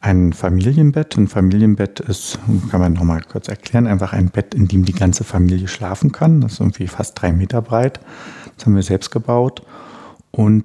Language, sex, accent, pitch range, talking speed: German, male, German, 95-115 Hz, 190 wpm